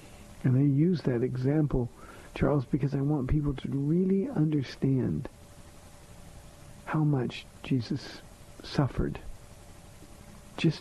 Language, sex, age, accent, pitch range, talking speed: English, male, 50-69, American, 135-170 Hz, 100 wpm